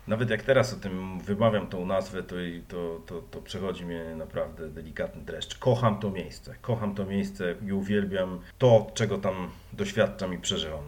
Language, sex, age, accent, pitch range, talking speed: Polish, male, 40-59, native, 95-115 Hz, 170 wpm